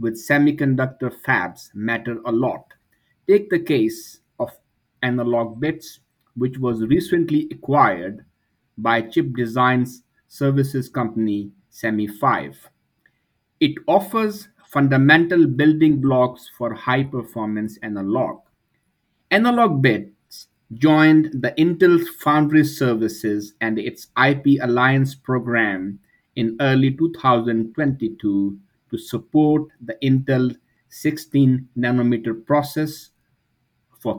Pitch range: 115-150 Hz